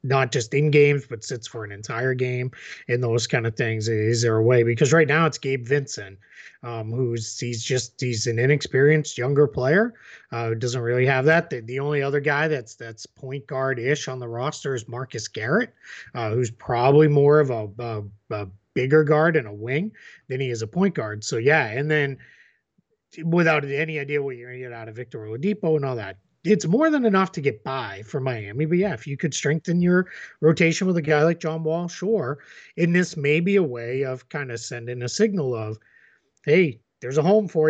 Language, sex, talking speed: English, male, 215 wpm